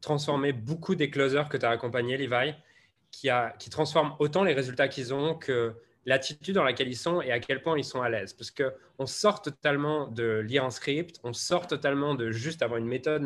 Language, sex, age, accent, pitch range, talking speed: French, male, 20-39, French, 115-145 Hz, 215 wpm